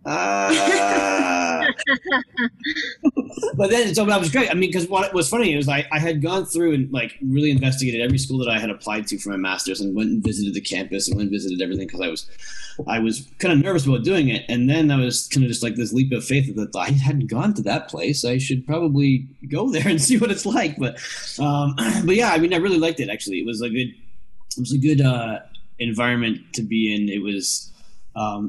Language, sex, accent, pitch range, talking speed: English, male, American, 105-145 Hz, 235 wpm